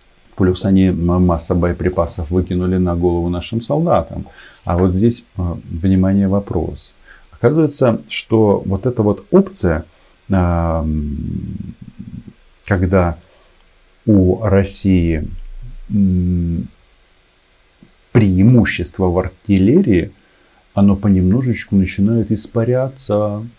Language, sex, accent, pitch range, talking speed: Russian, male, native, 90-110 Hz, 75 wpm